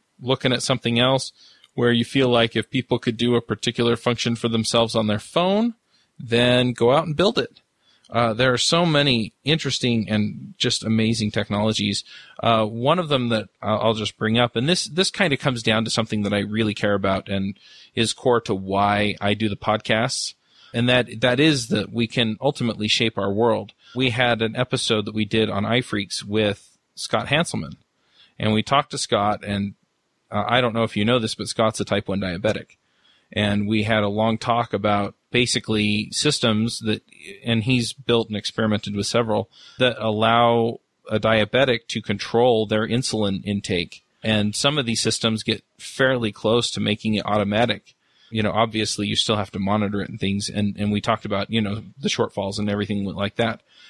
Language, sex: English, male